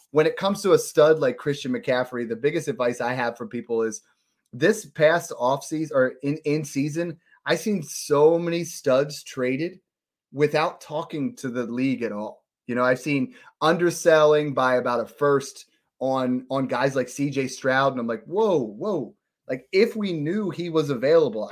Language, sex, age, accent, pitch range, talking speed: English, male, 30-49, American, 125-165 Hz, 180 wpm